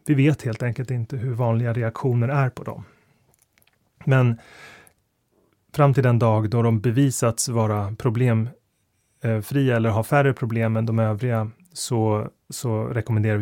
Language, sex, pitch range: Swedish, male, 115-135 Hz